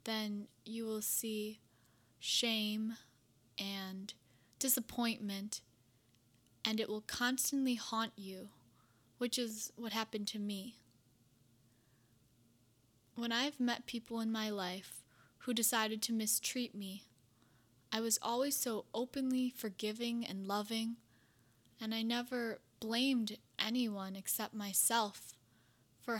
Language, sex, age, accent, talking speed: English, female, 10-29, American, 110 wpm